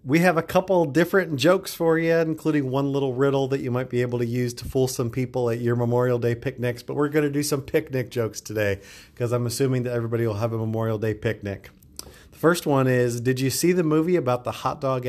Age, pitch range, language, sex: 40-59, 115-145 Hz, English, male